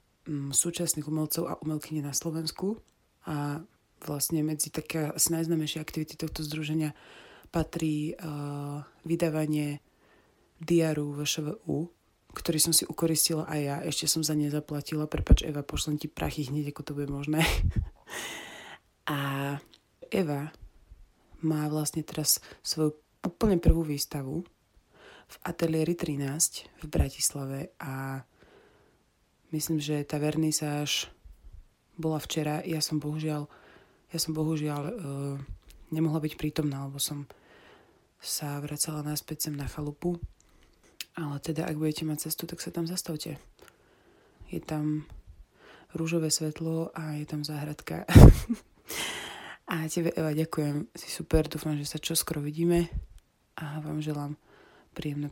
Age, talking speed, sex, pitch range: 30-49, 125 wpm, female, 145-160 Hz